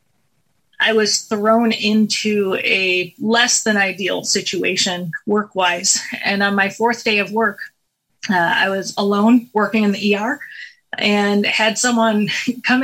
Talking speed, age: 135 wpm, 30-49